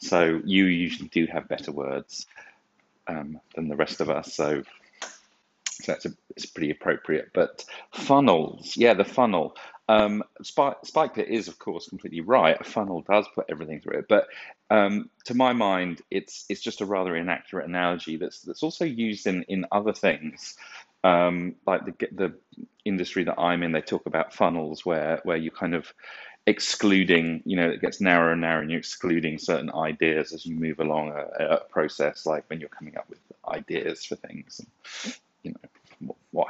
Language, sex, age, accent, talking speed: English, male, 30-49, British, 180 wpm